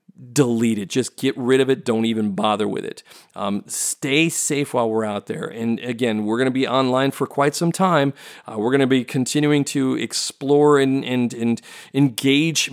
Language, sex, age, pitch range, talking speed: English, male, 40-59, 115-140 Hz, 195 wpm